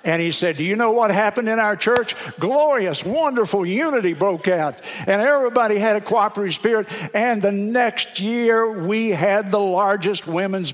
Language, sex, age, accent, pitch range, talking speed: English, male, 60-79, American, 155-200 Hz, 175 wpm